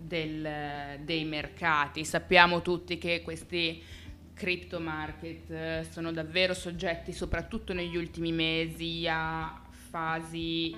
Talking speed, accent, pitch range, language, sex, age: 110 wpm, native, 160-185 Hz, Italian, female, 20-39